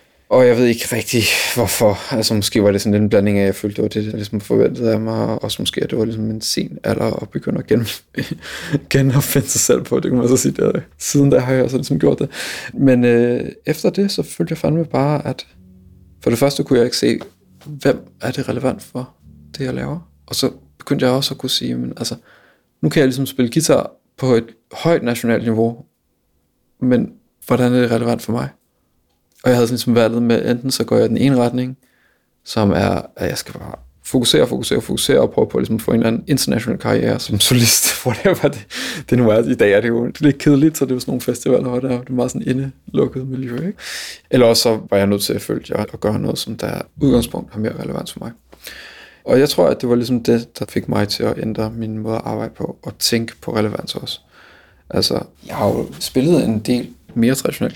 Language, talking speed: Danish, 235 wpm